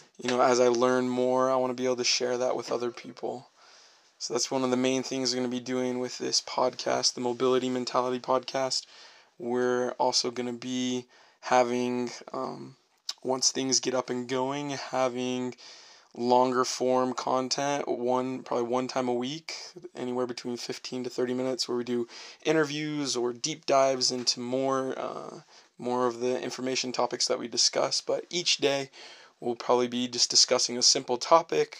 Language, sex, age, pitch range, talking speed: English, male, 20-39, 125-130 Hz, 170 wpm